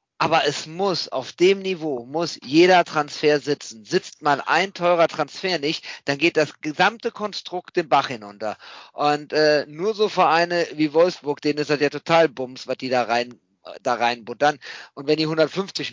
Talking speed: 175 wpm